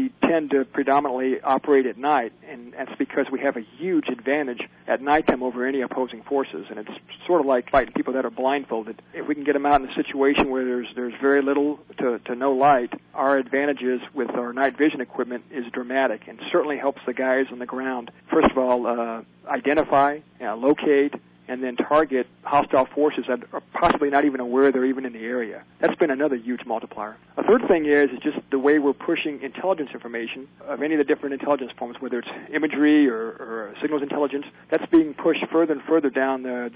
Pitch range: 125-145 Hz